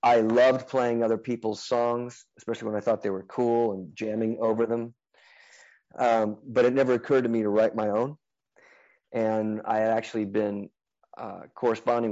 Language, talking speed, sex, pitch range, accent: English, 175 wpm, male, 100-115 Hz, American